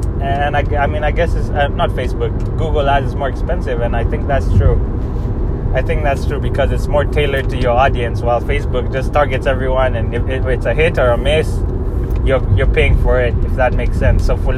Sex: male